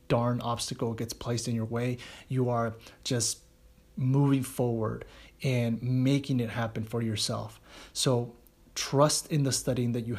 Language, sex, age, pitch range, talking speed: English, male, 30-49, 115-130 Hz, 145 wpm